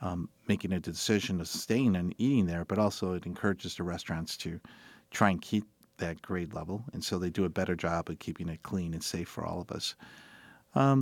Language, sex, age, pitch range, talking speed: English, male, 50-69, 85-100 Hz, 220 wpm